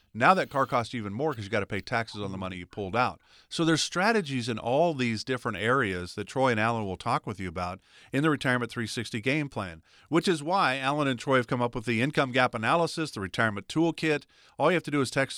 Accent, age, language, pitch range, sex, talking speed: American, 40-59, English, 110-150 Hz, male, 260 wpm